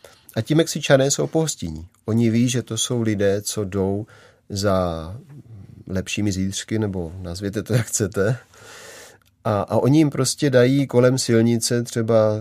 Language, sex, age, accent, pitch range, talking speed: Czech, male, 30-49, native, 95-115 Hz, 145 wpm